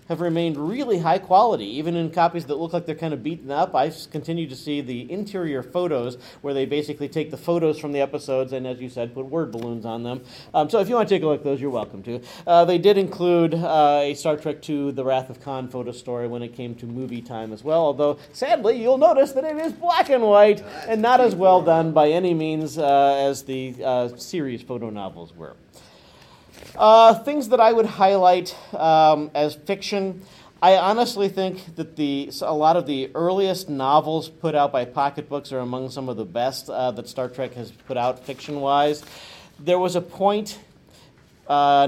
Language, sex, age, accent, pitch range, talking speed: English, male, 40-59, American, 130-170 Hz, 210 wpm